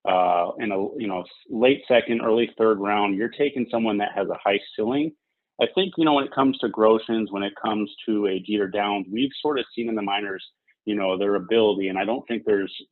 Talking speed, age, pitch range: 230 wpm, 30-49, 100-115 Hz